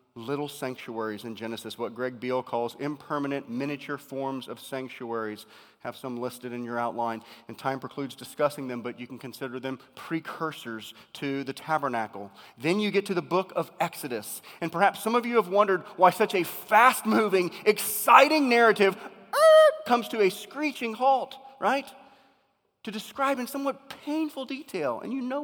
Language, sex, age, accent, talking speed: English, male, 30-49, American, 165 wpm